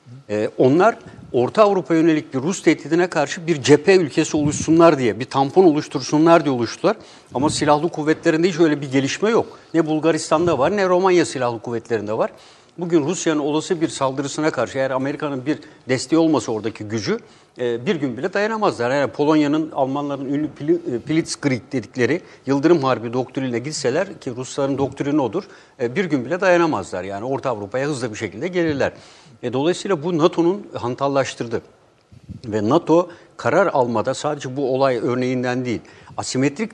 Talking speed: 150 wpm